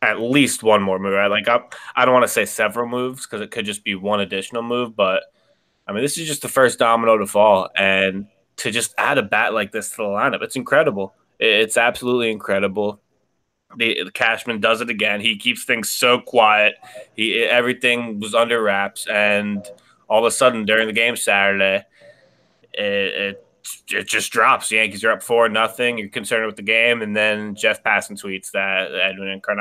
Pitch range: 100-120 Hz